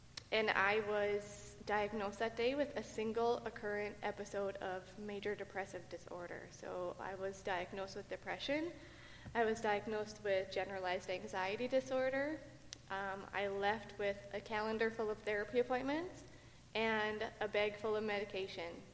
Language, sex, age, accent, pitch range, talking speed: English, female, 20-39, American, 190-220 Hz, 140 wpm